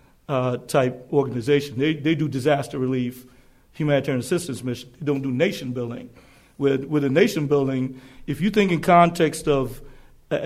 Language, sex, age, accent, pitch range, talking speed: English, male, 40-59, American, 135-170 Hz, 160 wpm